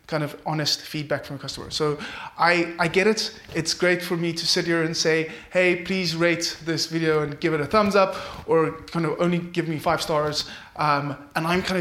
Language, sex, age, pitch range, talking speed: English, male, 20-39, 150-180 Hz, 225 wpm